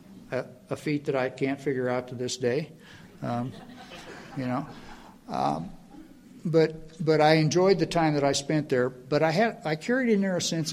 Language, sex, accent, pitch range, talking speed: English, male, American, 135-170 Hz, 190 wpm